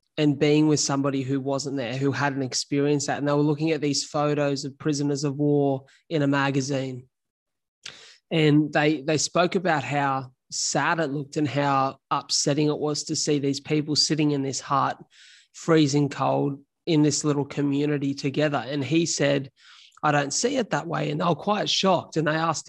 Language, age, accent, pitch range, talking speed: English, 20-39, Australian, 140-155 Hz, 190 wpm